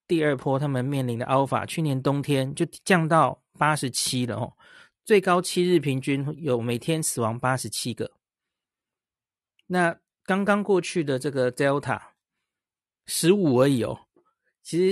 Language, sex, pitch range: Chinese, male, 125-170 Hz